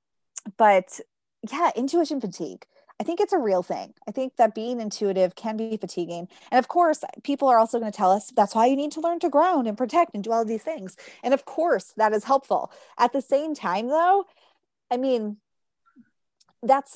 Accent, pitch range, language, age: American, 195-260 Hz, English, 20-39